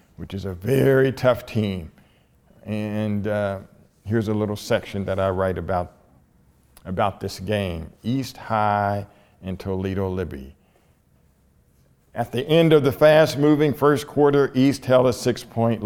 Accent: American